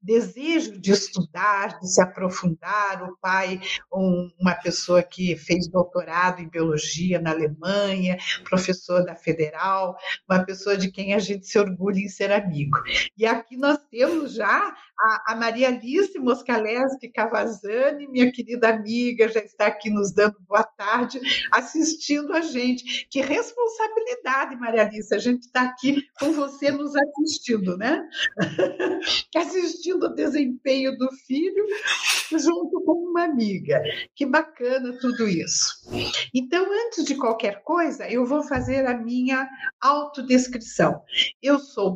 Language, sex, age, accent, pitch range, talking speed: Portuguese, female, 50-69, Brazilian, 190-285 Hz, 135 wpm